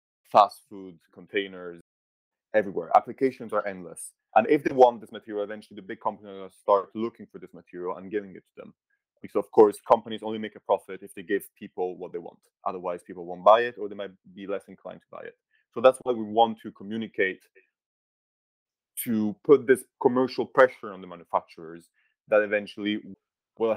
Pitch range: 100-120 Hz